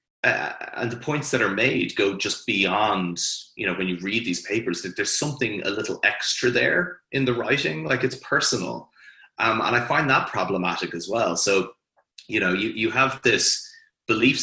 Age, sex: 30-49, male